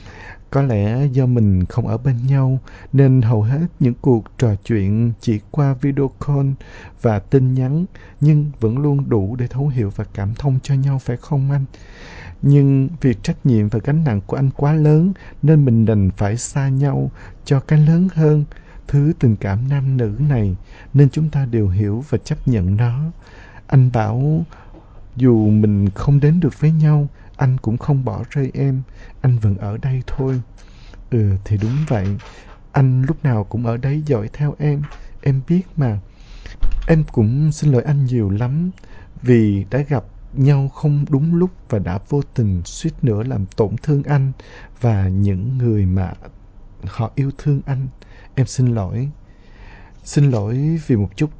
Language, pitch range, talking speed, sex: Vietnamese, 105-140 Hz, 175 wpm, male